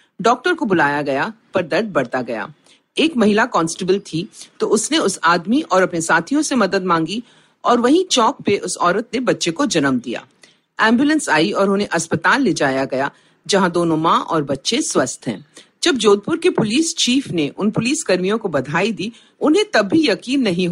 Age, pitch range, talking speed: 50-69, 165-265 Hz, 190 wpm